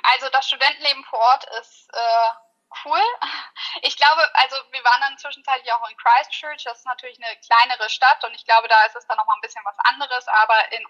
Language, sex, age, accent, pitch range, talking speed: German, female, 10-29, German, 225-265 Hz, 210 wpm